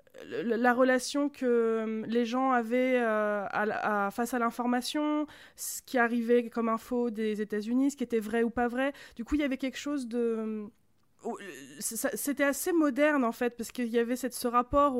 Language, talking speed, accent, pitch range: French, 170 wpm, French, 220-255 Hz